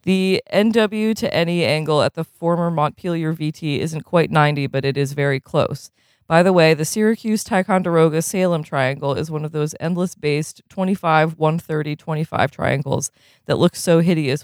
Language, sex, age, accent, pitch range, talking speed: English, female, 20-39, American, 150-195 Hz, 145 wpm